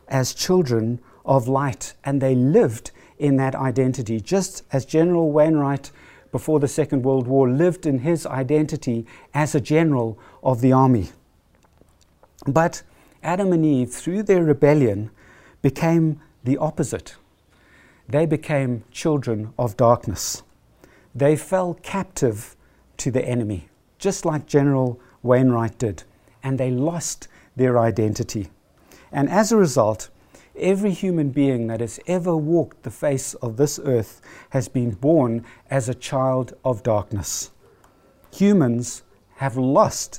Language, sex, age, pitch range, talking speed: English, male, 60-79, 115-150 Hz, 130 wpm